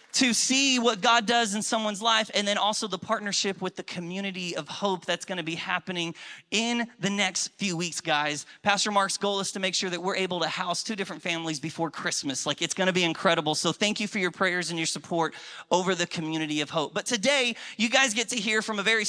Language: English